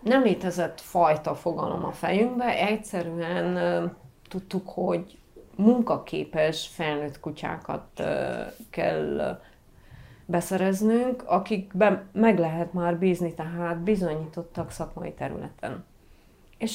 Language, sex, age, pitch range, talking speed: Hungarian, female, 30-49, 155-205 Hz, 85 wpm